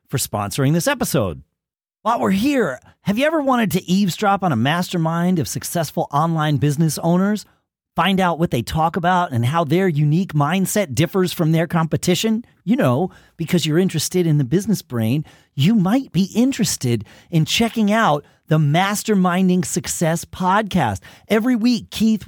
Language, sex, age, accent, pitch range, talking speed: English, male, 40-59, American, 145-195 Hz, 160 wpm